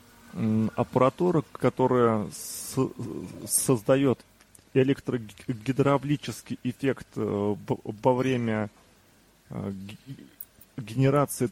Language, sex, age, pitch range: Russian, male, 20-39, 110-140 Hz